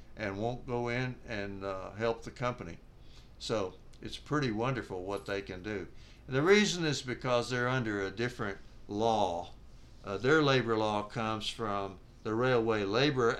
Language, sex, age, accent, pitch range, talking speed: English, male, 60-79, American, 100-120 Hz, 155 wpm